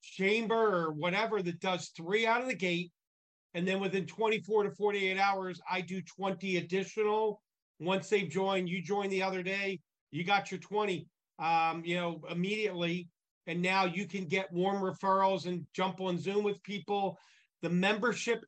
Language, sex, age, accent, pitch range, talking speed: English, male, 40-59, American, 180-205 Hz, 170 wpm